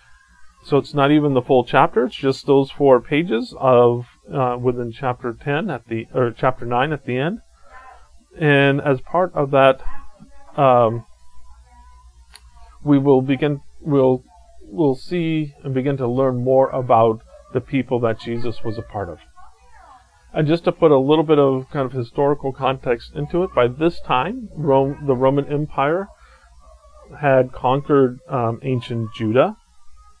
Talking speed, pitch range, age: 155 wpm, 120-140 Hz, 40-59